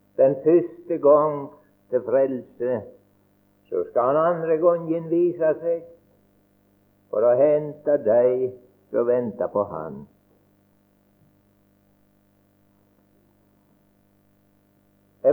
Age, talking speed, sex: 60-79, 80 wpm, male